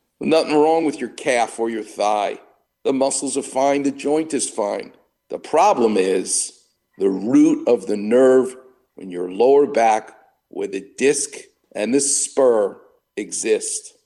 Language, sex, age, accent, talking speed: English, male, 50-69, American, 150 wpm